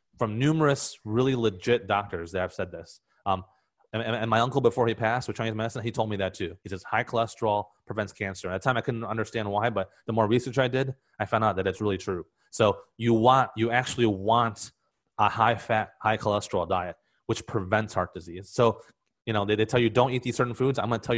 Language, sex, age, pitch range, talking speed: English, male, 30-49, 105-120 Hz, 240 wpm